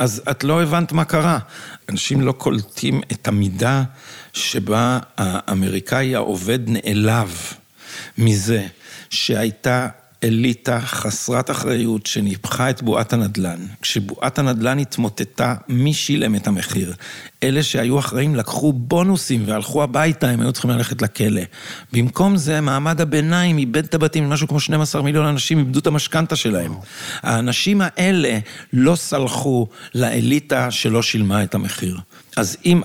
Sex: male